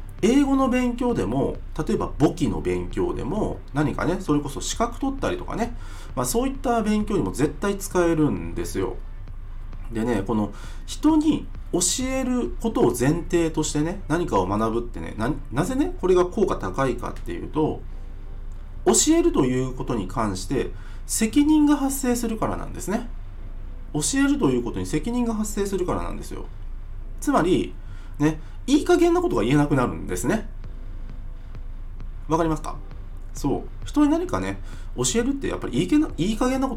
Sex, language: male, Japanese